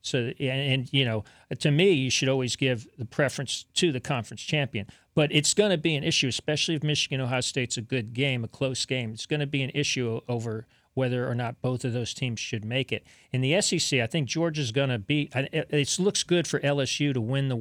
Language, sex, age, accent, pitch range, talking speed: English, male, 40-59, American, 120-145 Hz, 230 wpm